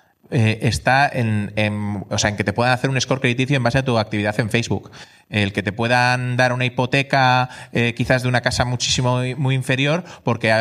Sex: male